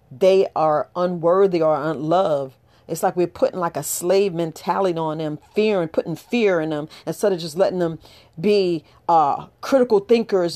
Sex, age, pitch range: female, 40-59, 160-210 Hz